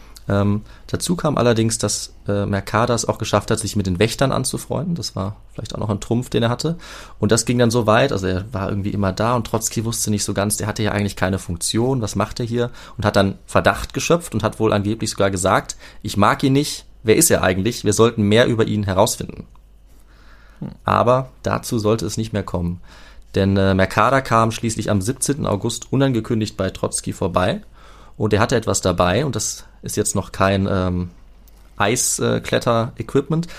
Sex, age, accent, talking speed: male, 30-49, German, 200 wpm